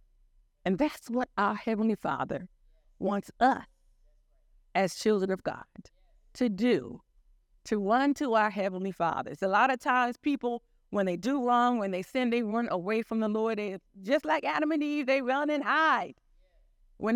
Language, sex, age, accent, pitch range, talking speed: English, female, 50-69, American, 195-275 Hz, 170 wpm